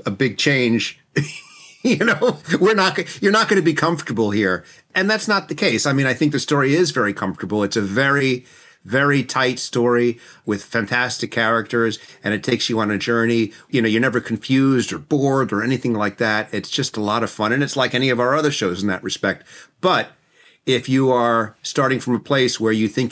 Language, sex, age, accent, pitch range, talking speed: English, male, 40-59, American, 105-135 Hz, 215 wpm